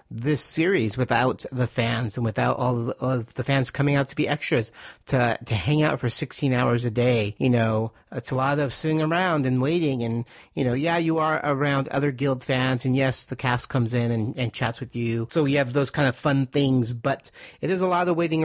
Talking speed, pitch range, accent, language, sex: 230 wpm, 120-150 Hz, American, English, male